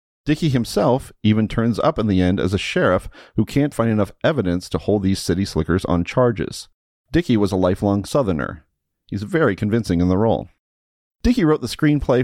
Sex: male